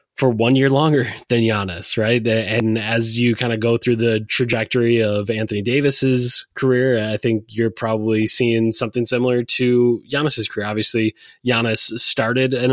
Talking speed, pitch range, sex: 160 wpm, 110-125 Hz, male